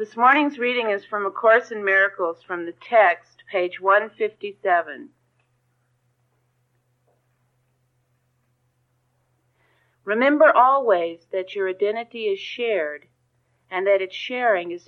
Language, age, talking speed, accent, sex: English, 50-69, 105 wpm, American, female